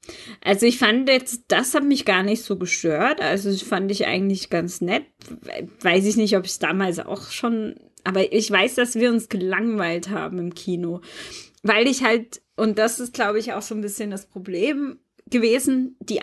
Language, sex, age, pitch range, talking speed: German, female, 20-39, 195-240 Hz, 195 wpm